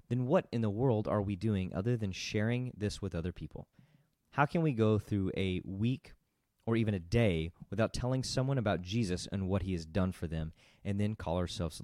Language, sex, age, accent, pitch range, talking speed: English, male, 30-49, American, 90-115 Hz, 215 wpm